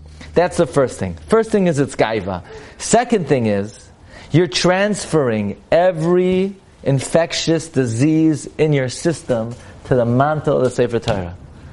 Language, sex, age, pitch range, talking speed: English, male, 40-59, 105-155 Hz, 135 wpm